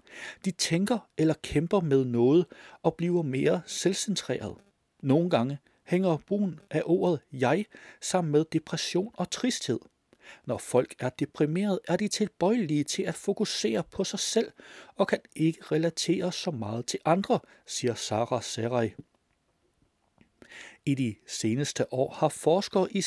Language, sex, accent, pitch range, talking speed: Danish, male, native, 135-190 Hz, 140 wpm